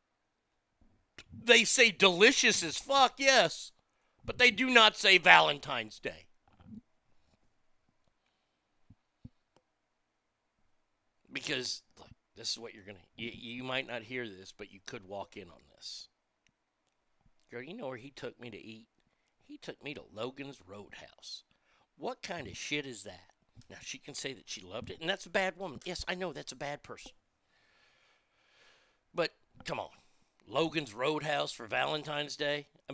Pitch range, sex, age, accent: 145-215 Hz, male, 50-69, American